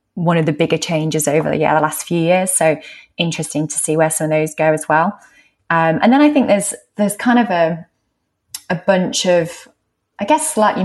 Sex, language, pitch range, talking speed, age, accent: female, English, 155-185 Hz, 215 wpm, 20-39, British